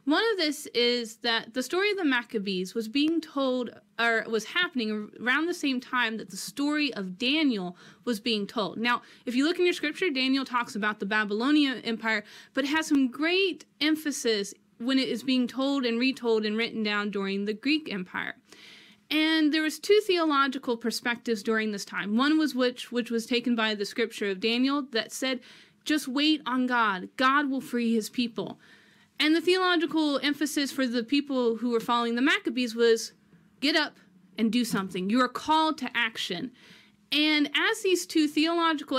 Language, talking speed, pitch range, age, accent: English, 185 wpm, 220-290 Hz, 30-49, American